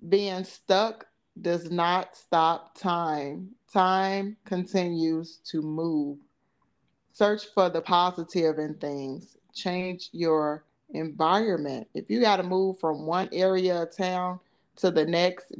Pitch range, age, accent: 155-185 Hz, 30-49, American